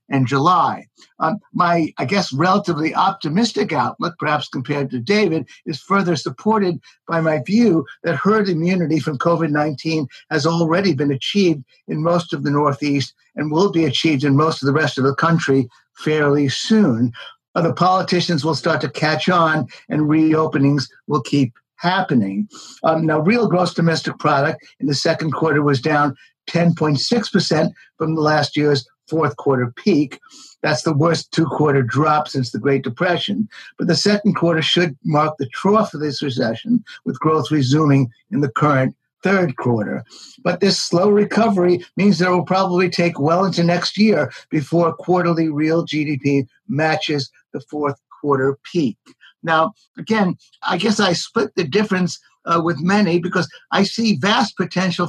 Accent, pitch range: American, 145-180 Hz